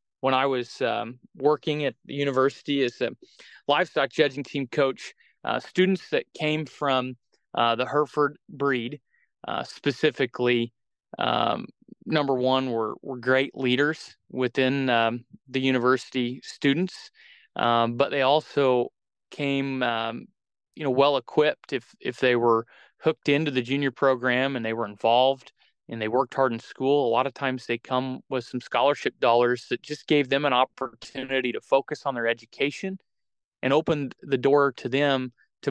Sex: male